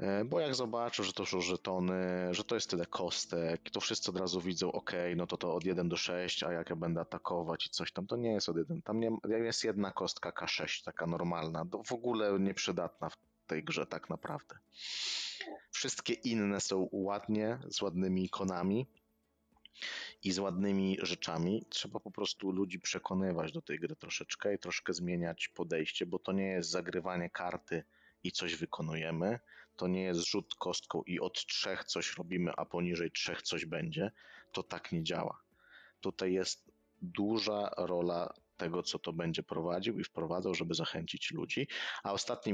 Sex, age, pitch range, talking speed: male, 30-49, 85-100 Hz, 170 wpm